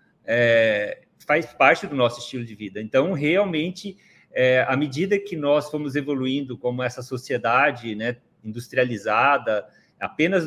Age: 30-49